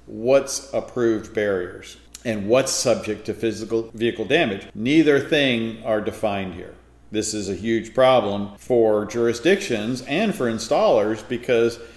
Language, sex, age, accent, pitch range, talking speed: English, male, 50-69, American, 105-125 Hz, 130 wpm